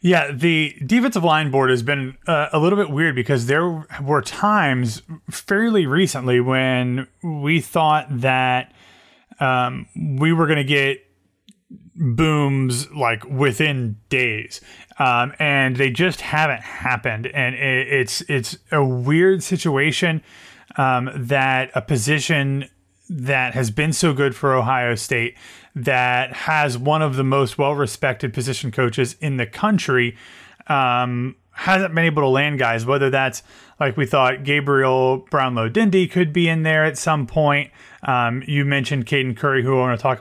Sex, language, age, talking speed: male, English, 30-49, 150 wpm